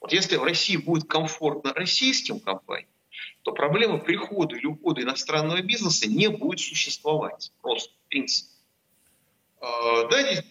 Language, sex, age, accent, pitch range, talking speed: Russian, male, 30-49, native, 125-170 Hz, 130 wpm